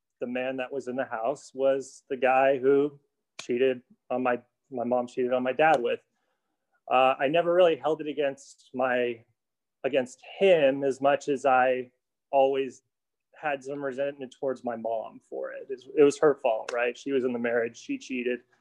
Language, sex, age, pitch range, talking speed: English, male, 30-49, 130-160 Hz, 180 wpm